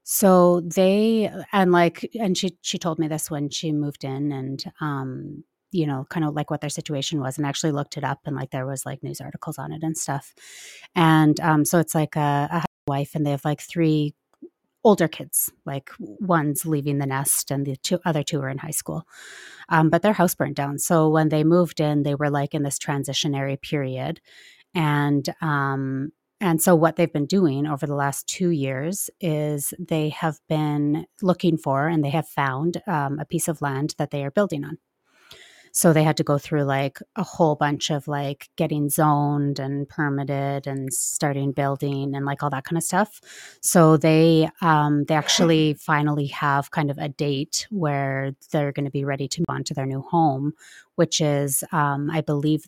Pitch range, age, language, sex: 140-170 Hz, 30-49, English, female